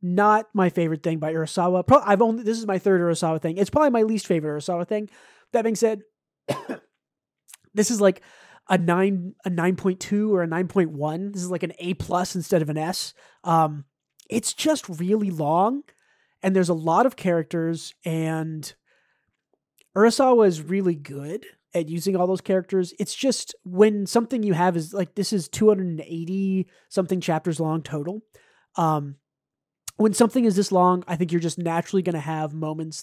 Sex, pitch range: male, 160-205 Hz